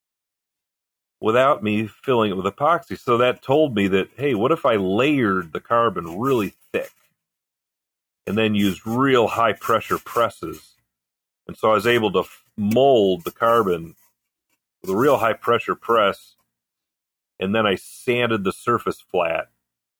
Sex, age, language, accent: male, 40-59, English, American